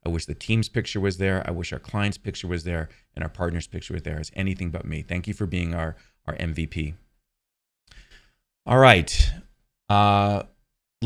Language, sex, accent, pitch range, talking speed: English, male, American, 90-115 Hz, 185 wpm